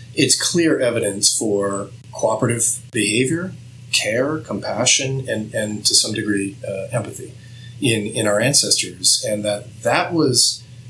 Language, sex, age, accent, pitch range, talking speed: English, male, 30-49, American, 110-130 Hz, 125 wpm